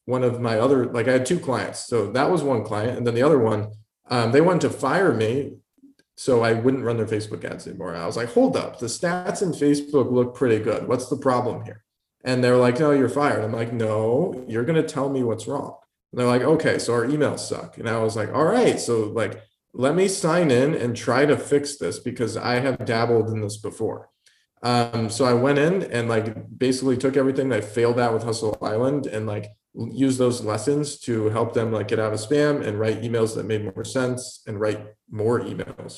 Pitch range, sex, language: 110-130 Hz, male, English